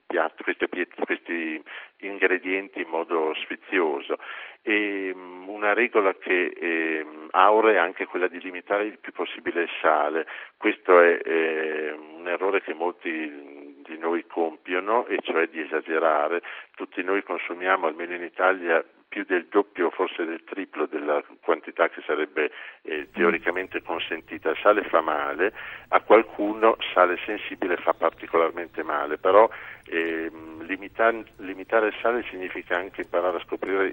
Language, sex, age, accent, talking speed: Italian, male, 50-69, native, 135 wpm